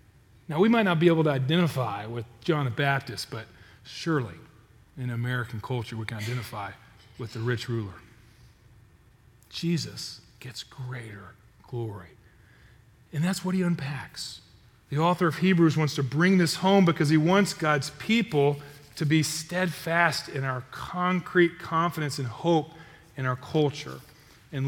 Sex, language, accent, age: male, English, American, 40-59